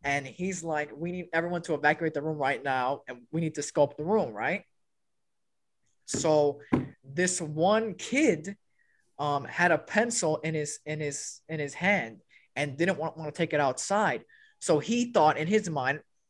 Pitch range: 155-235 Hz